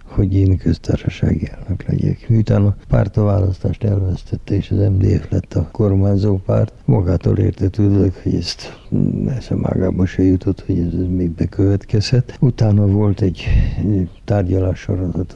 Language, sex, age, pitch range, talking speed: Hungarian, male, 60-79, 90-100 Hz, 135 wpm